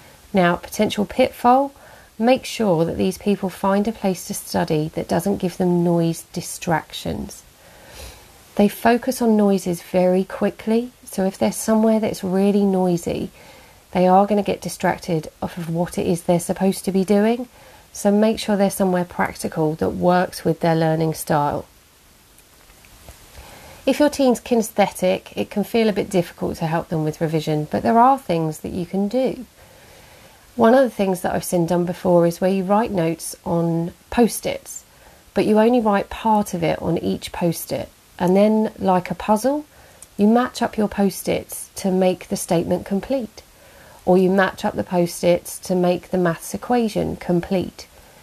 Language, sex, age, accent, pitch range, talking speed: English, female, 40-59, British, 175-215 Hz, 170 wpm